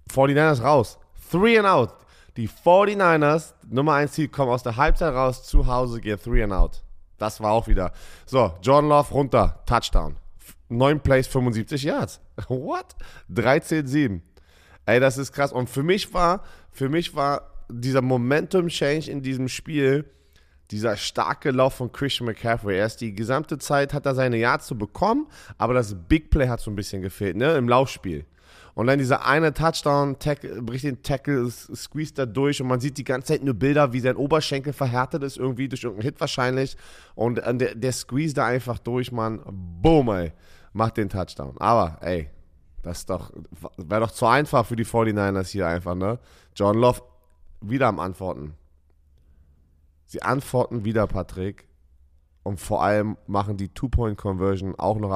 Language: German